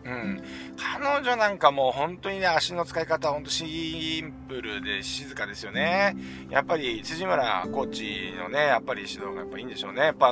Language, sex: Japanese, male